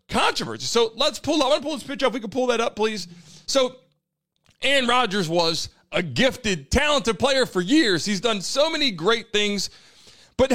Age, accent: 30-49, American